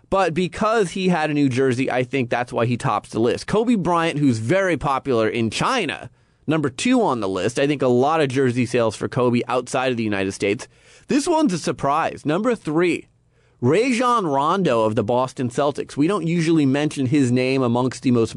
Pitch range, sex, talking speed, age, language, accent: 125-165 Hz, male, 205 wpm, 30-49, English, American